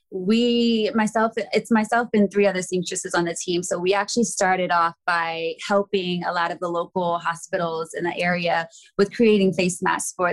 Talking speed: 185 wpm